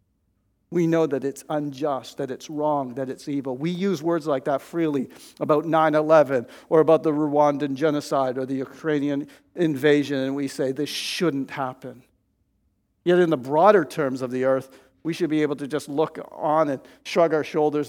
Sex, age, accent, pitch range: male, 50-69, American, 130-160 Hz